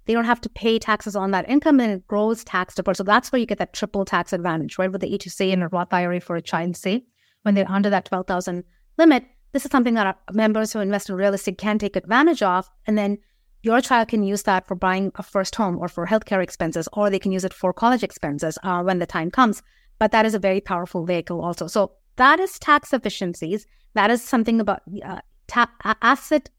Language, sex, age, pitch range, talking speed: English, female, 30-49, 195-230 Hz, 240 wpm